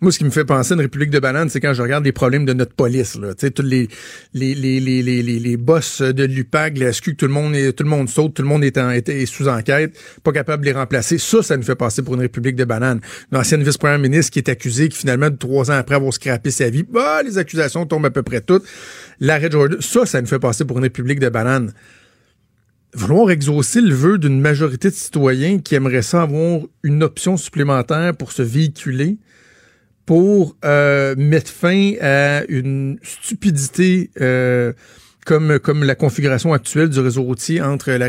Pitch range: 130-160 Hz